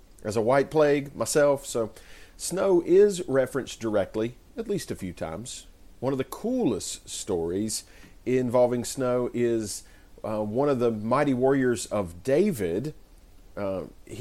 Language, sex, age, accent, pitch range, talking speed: English, male, 40-59, American, 95-125 Hz, 135 wpm